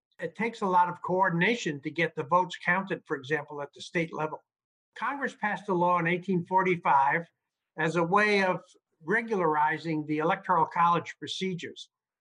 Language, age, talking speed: English, 60-79, 155 wpm